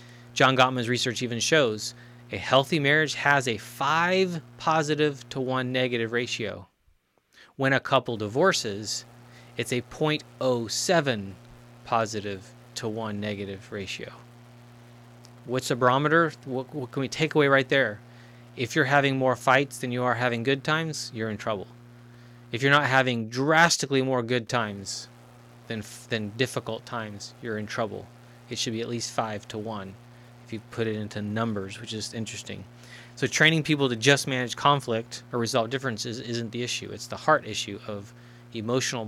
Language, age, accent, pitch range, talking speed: English, 30-49, American, 115-130 Hz, 160 wpm